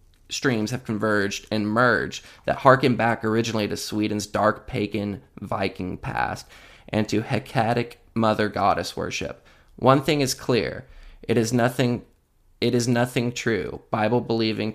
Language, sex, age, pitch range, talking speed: English, male, 20-39, 105-120 Hz, 140 wpm